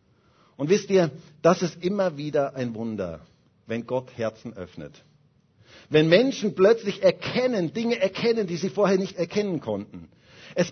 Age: 50-69